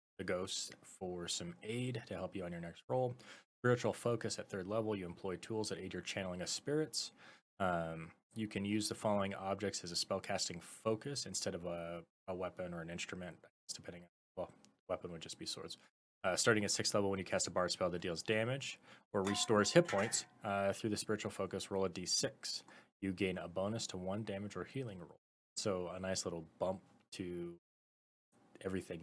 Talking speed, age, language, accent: 200 wpm, 20-39, English, American